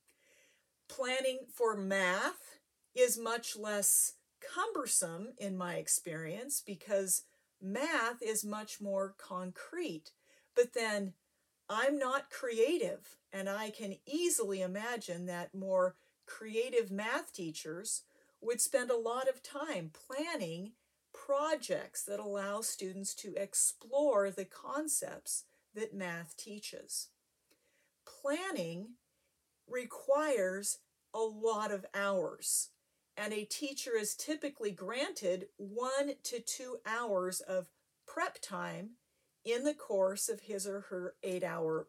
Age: 50-69